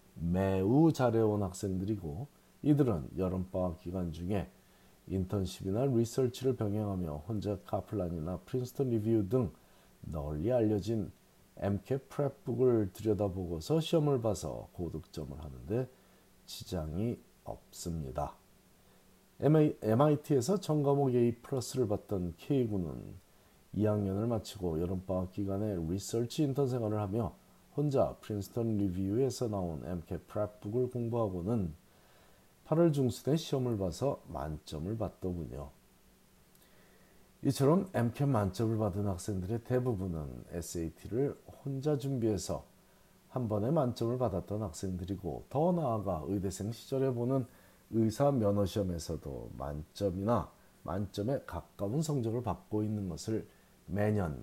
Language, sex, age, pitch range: Korean, male, 40-59, 90-125 Hz